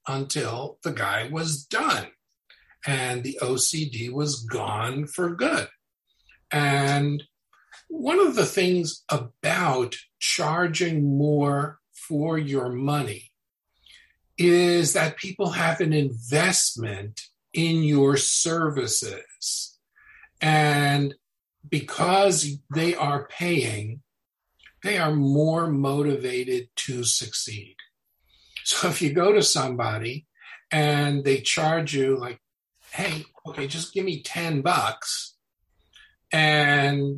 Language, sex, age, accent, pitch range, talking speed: English, male, 50-69, American, 135-165 Hz, 100 wpm